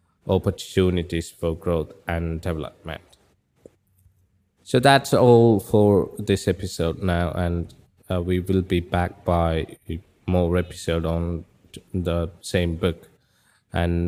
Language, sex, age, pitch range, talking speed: Malayalam, male, 20-39, 85-95 Hz, 110 wpm